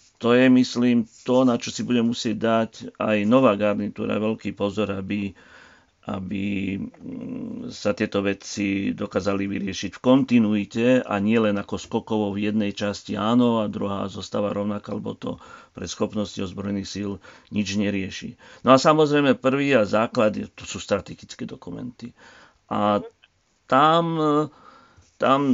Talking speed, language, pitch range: 135 wpm, Slovak, 100-120 Hz